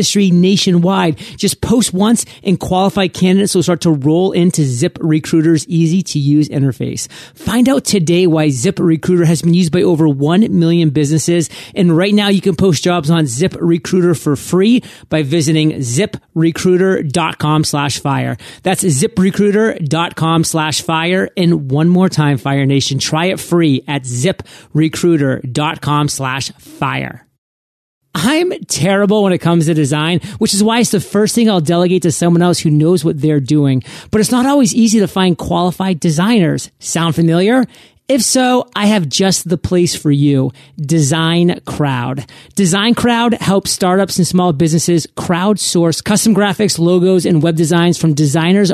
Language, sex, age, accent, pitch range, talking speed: English, male, 30-49, American, 155-195 Hz, 160 wpm